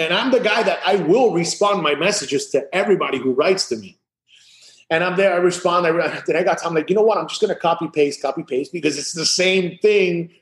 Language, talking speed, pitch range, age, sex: English, 240 wpm, 150-195 Hz, 30-49, male